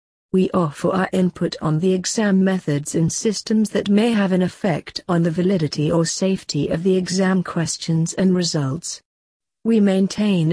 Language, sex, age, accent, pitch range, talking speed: English, female, 50-69, British, 155-195 Hz, 160 wpm